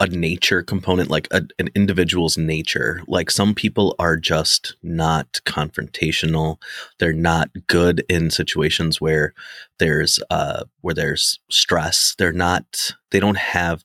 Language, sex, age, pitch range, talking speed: English, male, 30-49, 80-95 Hz, 135 wpm